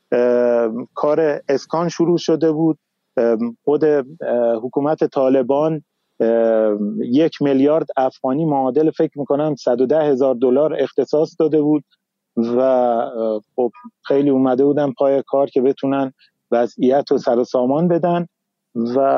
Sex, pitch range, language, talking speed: male, 135-160 Hz, Persian, 115 wpm